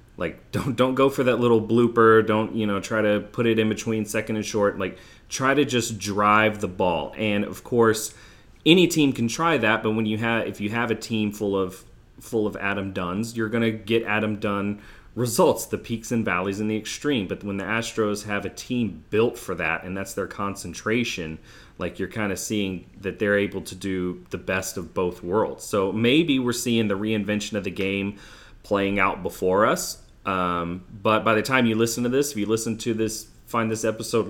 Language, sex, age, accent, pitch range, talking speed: English, male, 30-49, American, 100-115 Hz, 215 wpm